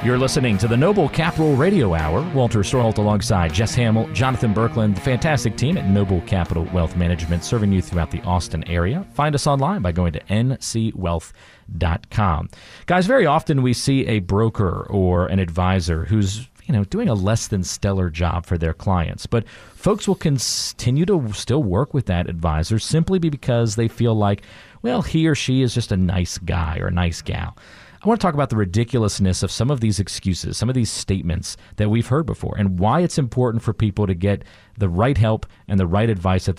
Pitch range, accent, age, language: 95-125 Hz, American, 40-59, English